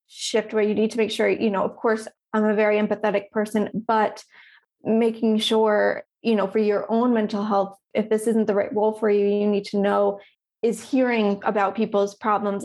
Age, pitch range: 20-39, 200-220 Hz